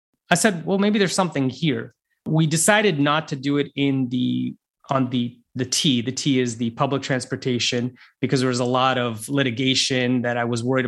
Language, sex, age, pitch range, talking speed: English, male, 30-49, 125-155 Hz, 200 wpm